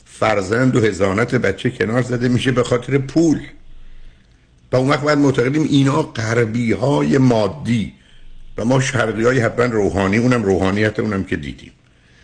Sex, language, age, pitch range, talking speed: male, Persian, 50-69, 90-125 Hz, 145 wpm